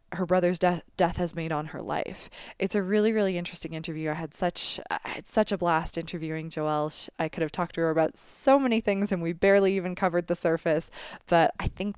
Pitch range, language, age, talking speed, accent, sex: 165-205 Hz, English, 20-39, 225 wpm, American, female